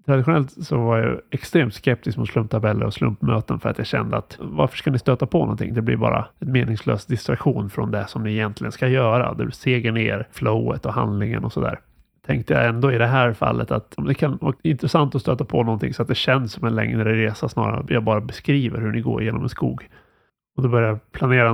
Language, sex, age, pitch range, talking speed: Swedish, male, 30-49, 110-140 Hz, 230 wpm